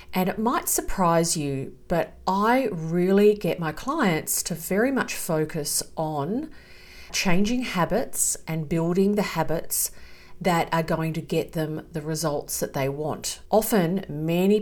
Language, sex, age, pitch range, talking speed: English, female, 40-59, 155-195 Hz, 145 wpm